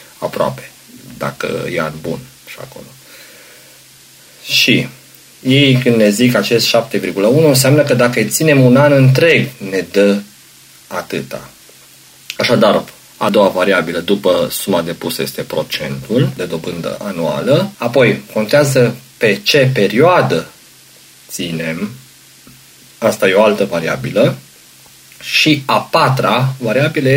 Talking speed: 115 wpm